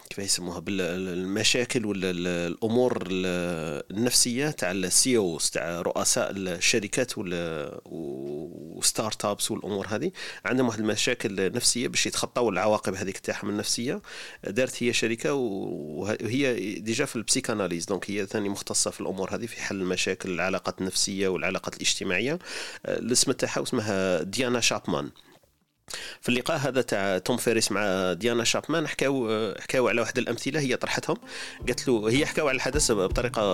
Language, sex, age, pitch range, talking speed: Arabic, male, 40-59, 95-125 Hz, 135 wpm